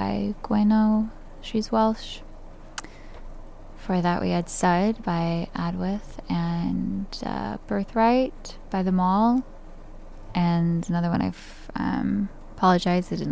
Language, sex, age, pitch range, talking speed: French, female, 10-29, 170-200 Hz, 115 wpm